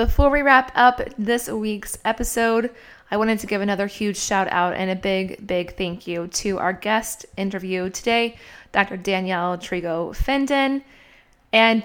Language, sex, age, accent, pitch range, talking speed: English, female, 20-39, American, 190-240 Hz, 155 wpm